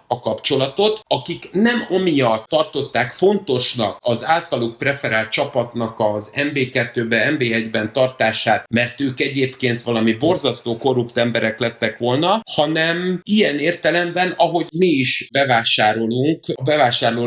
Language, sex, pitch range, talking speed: Hungarian, male, 120-155 Hz, 115 wpm